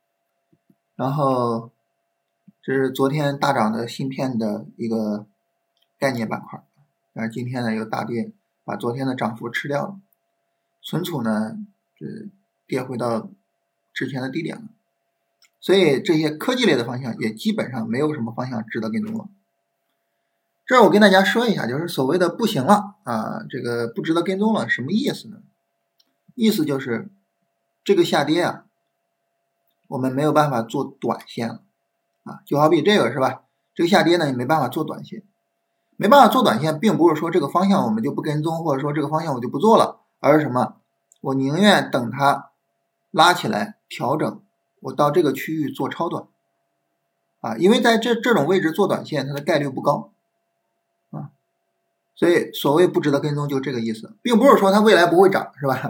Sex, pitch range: male, 120-195 Hz